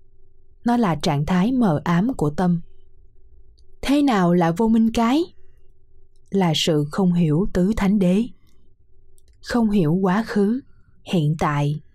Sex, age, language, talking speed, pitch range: female, 20-39, Vietnamese, 135 wpm, 175-225 Hz